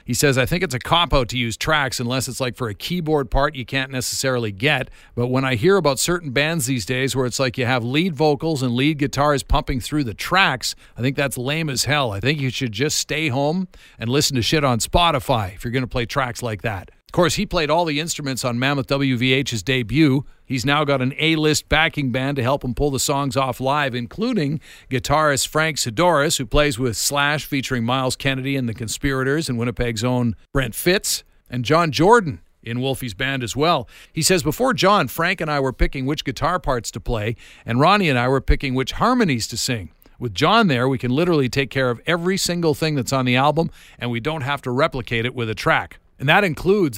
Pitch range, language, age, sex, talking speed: 125-155 Hz, English, 50-69, male, 225 wpm